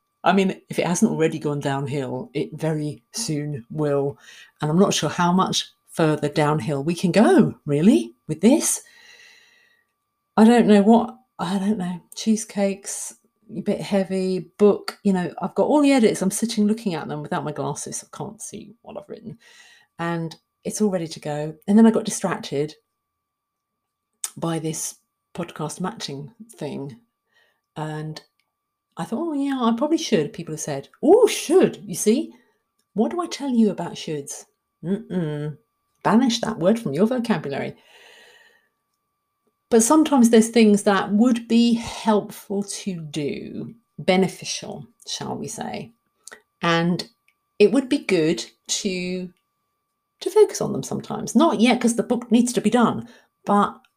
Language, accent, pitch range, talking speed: English, British, 160-230 Hz, 155 wpm